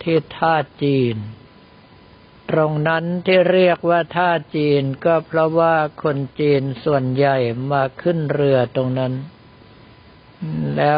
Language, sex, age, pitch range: Thai, male, 60-79, 135-160 Hz